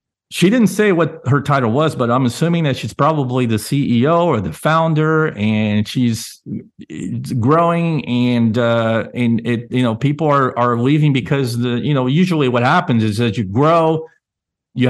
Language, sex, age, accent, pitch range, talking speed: English, male, 50-69, American, 110-145 Hz, 175 wpm